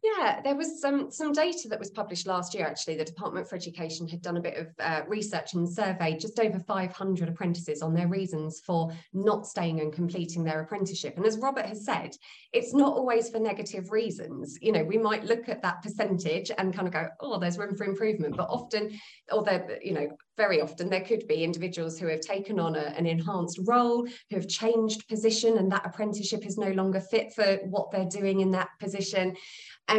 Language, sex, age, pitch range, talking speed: English, female, 20-39, 175-220 Hz, 210 wpm